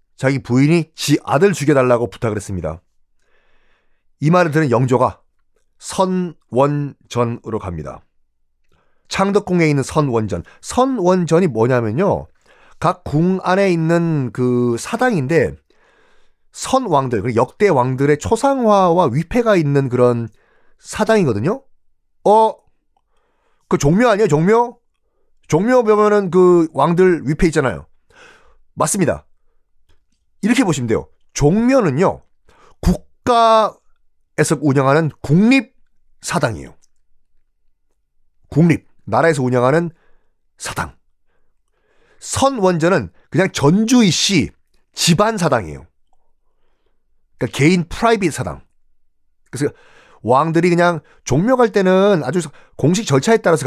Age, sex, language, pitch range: 30-49, male, Korean, 120-205 Hz